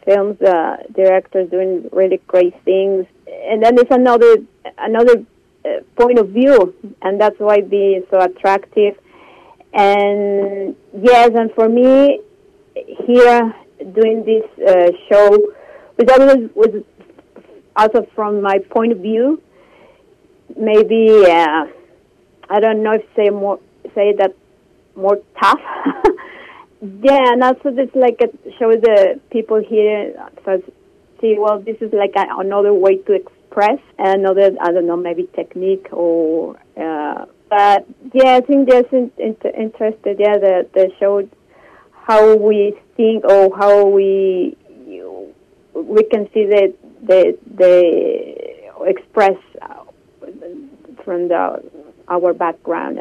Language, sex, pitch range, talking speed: English, female, 195-245 Hz, 120 wpm